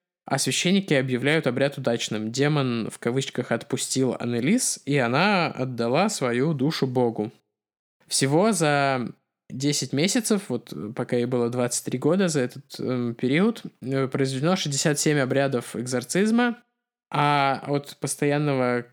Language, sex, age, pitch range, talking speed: Russian, male, 20-39, 125-160 Hz, 115 wpm